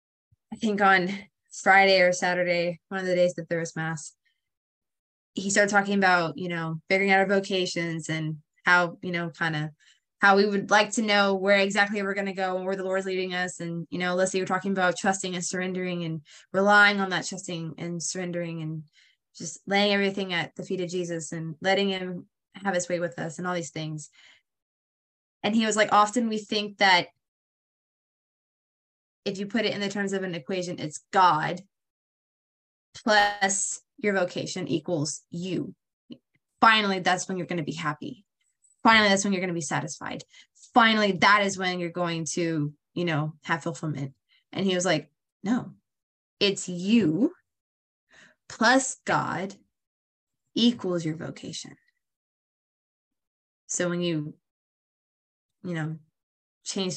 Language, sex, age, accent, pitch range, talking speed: English, female, 20-39, American, 170-200 Hz, 165 wpm